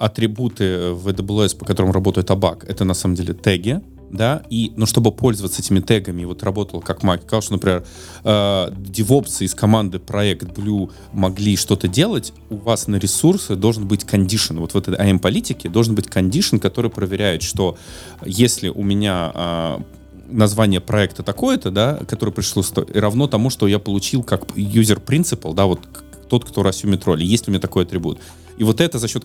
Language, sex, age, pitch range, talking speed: Russian, male, 20-39, 95-110 Hz, 175 wpm